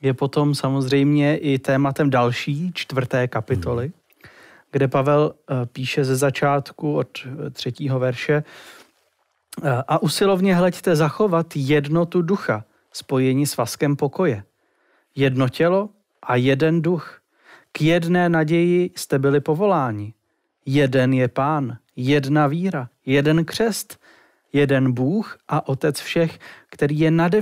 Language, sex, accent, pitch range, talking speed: Czech, male, native, 130-165 Hz, 115 wpm